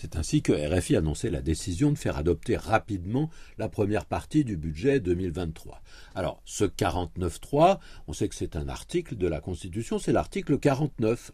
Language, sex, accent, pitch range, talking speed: French, male, French, 95-150 Hz, 170 wpm